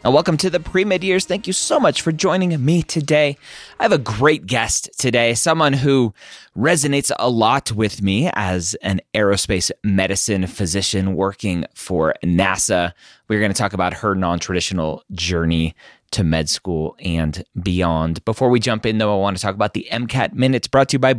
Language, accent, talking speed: English, American, 185 wpm